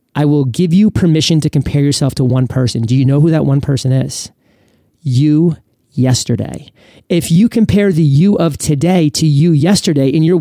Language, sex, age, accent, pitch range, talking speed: English, male, 30-49, American, 140-170 Hz, 190 wpm